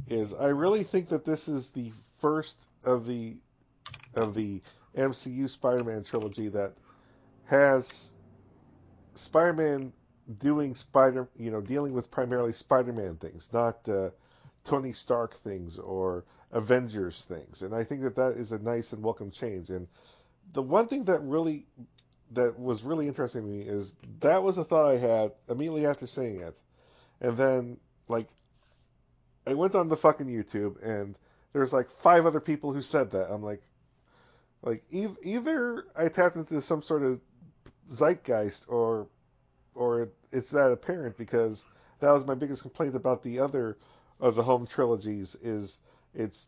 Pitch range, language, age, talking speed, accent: 110-140 Hz, English, 50-69, 155 wpm, American